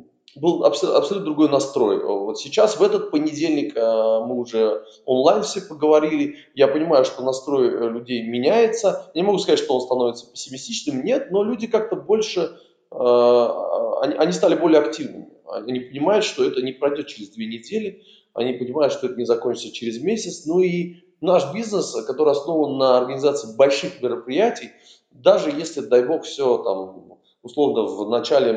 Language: Russian